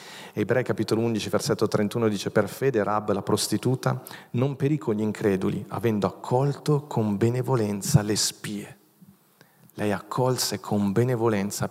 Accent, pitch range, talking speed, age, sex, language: native, 110-145 Hz, 135 wpm, 40-59, male, Italian